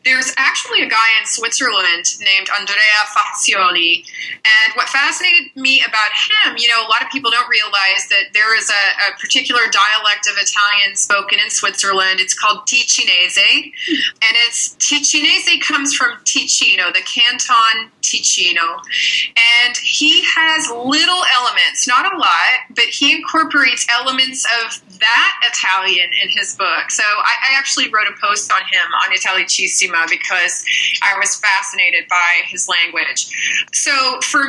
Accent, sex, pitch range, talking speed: American, female, 205-295 Hz, 150 wpm